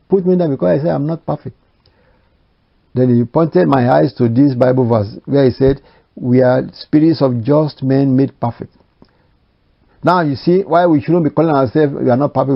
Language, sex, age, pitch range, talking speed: English, male, 60-79, 130-175 Hz, 205 wpm